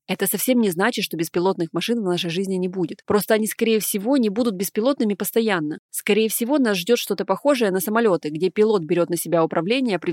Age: 20-39